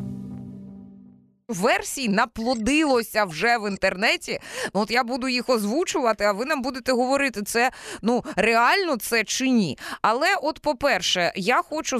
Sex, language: female, Ukrainian